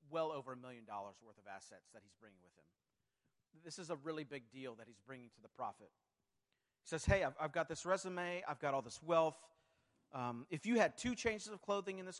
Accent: American